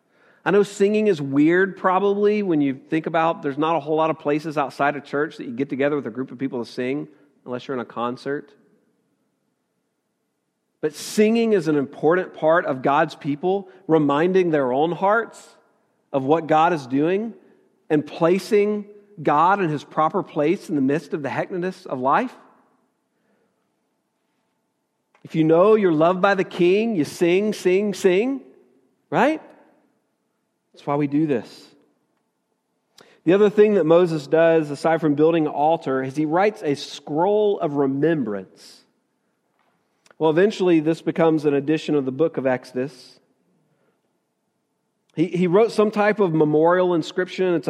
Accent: American